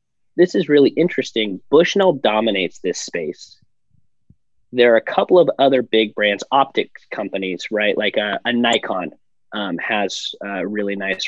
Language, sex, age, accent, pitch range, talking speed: English, male, 20-39, American, 105-125 Hz, 150 wpm